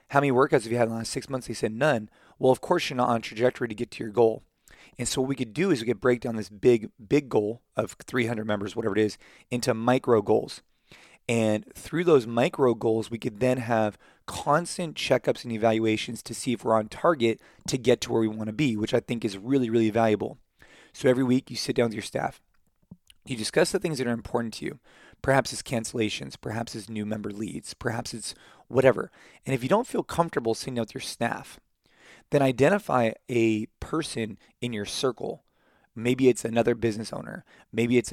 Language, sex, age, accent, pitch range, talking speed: English, male, 20-39, American, 110-130 Hz, 215 wpm